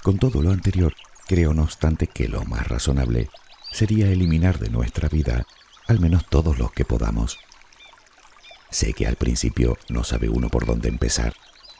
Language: Spanish